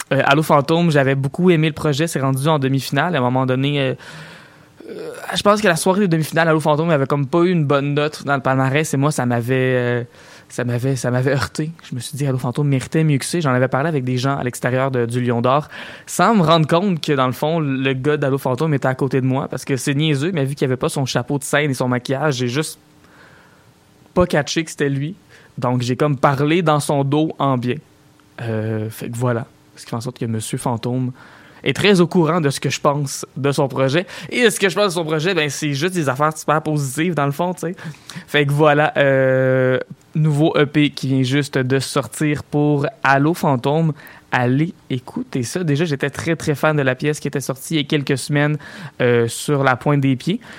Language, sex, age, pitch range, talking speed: French, male, 20-39, 130-160 Hz, 235 wpm